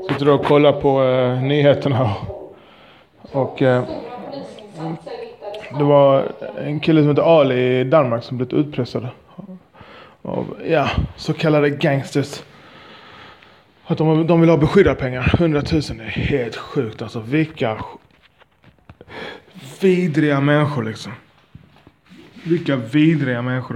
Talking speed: 120 wpm